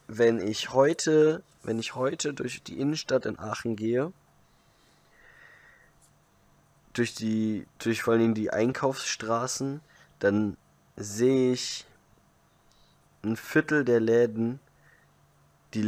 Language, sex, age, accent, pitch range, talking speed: German, male, 20-39, German, 105-130 Hz, 100 wpm